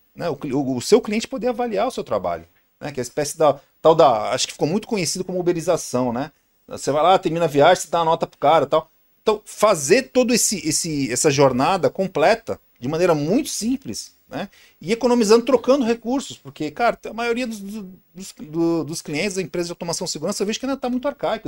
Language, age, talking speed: Portuguese, 50-69, 220 wpm